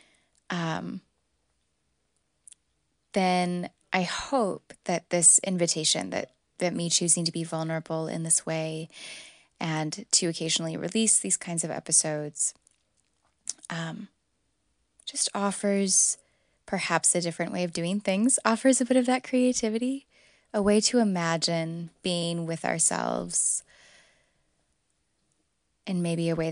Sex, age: female, 20-39